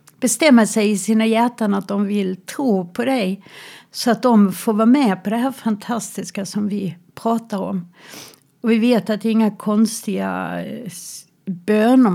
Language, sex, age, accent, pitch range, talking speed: Swedish, female, 60-79, native, 185-220 Hz, 170 wpm